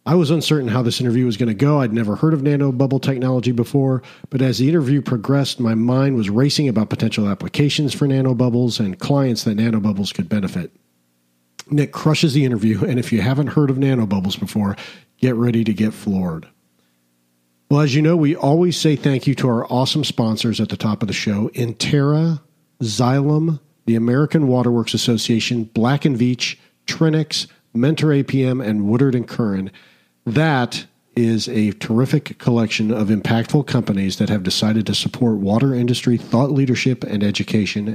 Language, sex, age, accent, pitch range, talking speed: English, male, 50-69, American, 110-140 Hz, 175 wpm